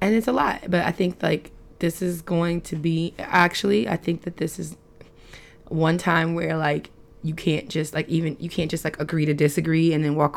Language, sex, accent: English, female, American